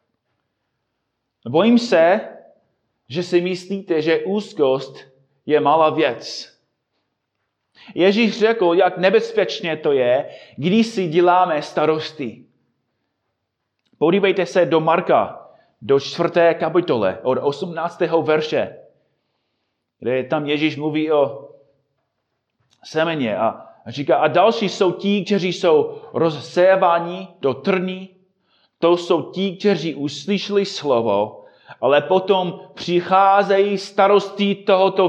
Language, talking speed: Czech, 100 wpm